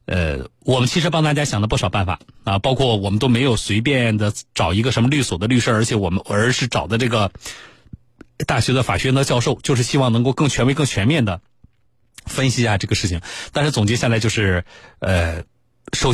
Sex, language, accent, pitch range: male, Chinese, native, 95-130 Hz